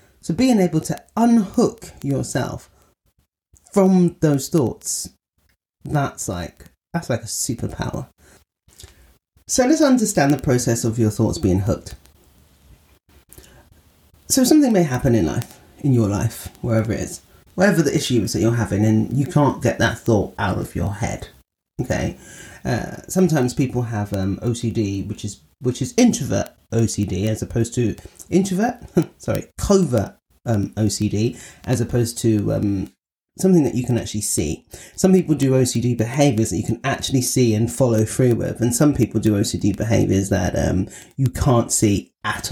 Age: 30-49